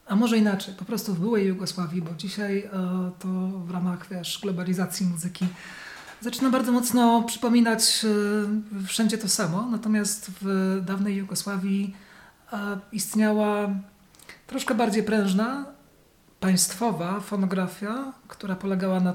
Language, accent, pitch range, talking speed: Polish, native, 185-215 Hz, 115 wpm